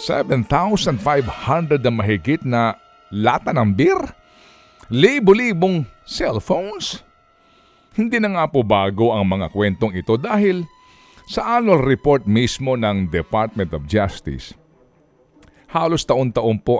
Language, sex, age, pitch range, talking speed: Filipino, male, 50-69, 110-175 Hz, 105 wpm